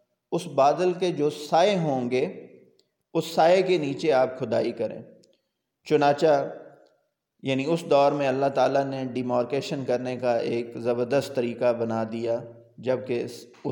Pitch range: 120-145 Hz